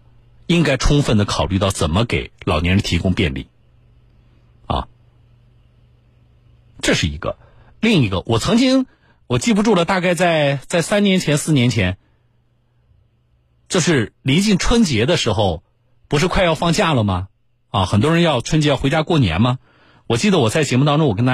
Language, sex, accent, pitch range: Chinese, male, native, 120-170 Hz